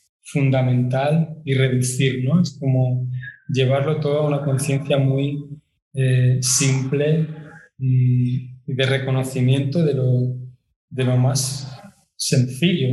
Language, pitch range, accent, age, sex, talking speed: Spanish, 130-155 Hz, Spanish, 20-39, male, 105 wpm